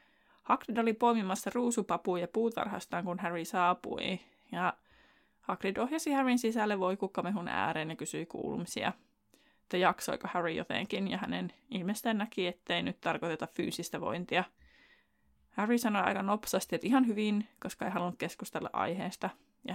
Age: 20-39